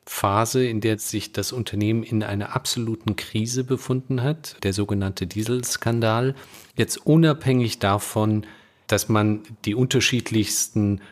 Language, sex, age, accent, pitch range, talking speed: German, male, 40-59, German, 105-125 Hz, 120 wpm